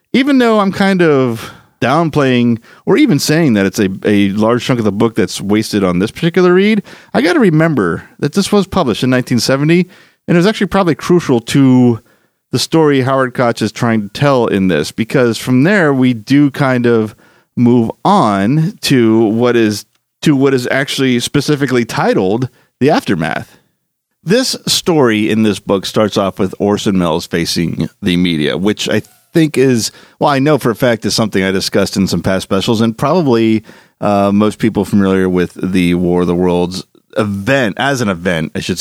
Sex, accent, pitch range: male, American, 100-140 Hz